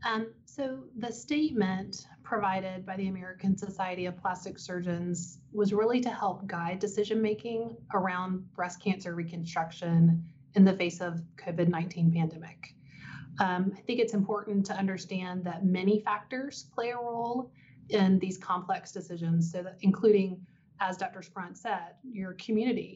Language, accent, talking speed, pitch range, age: English, American, 140 wpm, 170-200 Hz, 30-49